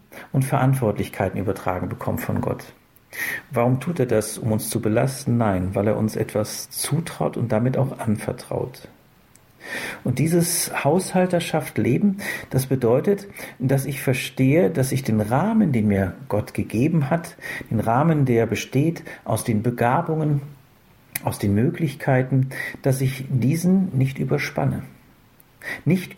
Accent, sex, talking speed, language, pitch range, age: German, male, 130 wpm, German, 115-150 Hz, 50-69